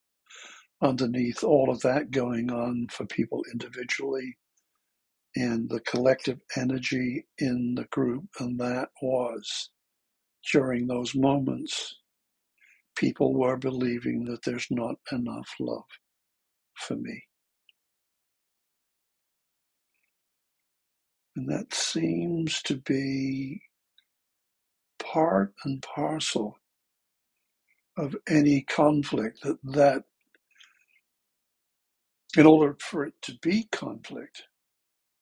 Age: 60-79